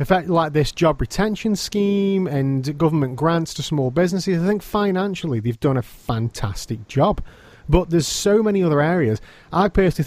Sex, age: male, 30-49